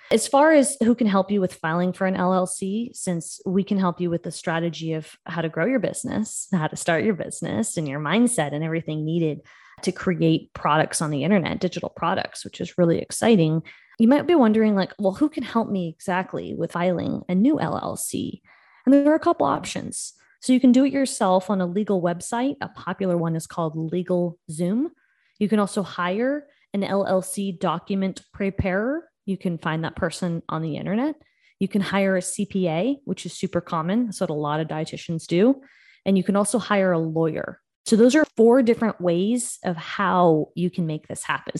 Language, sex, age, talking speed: English, female, 20-39, 200 wpm